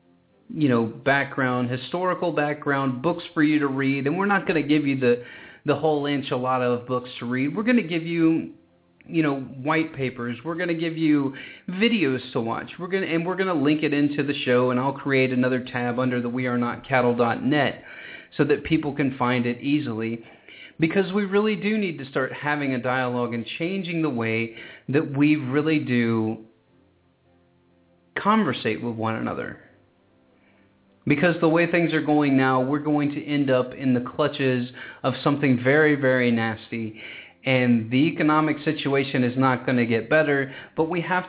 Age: 30-49